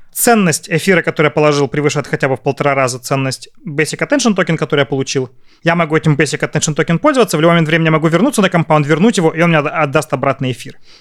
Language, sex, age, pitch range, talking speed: Russian, male, 30-49, 140-180 Hz, 225 wpm